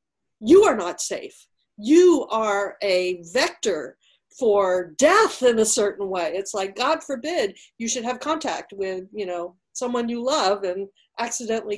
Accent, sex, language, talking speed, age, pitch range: American, female, English, 155 wpm, 50-69, 200-255 Hz